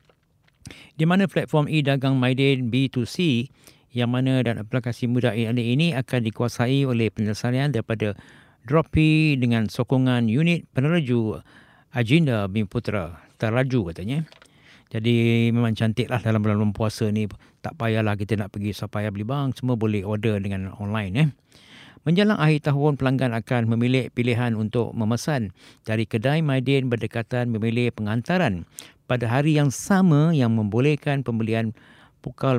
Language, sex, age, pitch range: Japanese, male, 50-69, 115-140 Hz